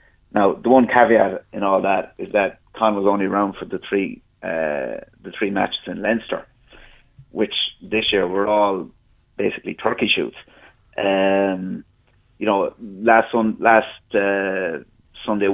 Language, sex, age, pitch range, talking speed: English, male, 30-49, 95-115 Hz, 145 wpm